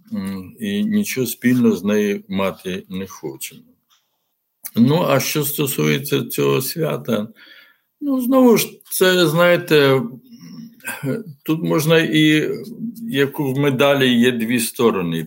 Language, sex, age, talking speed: Ukrainian, male, 60-79, 110 wpm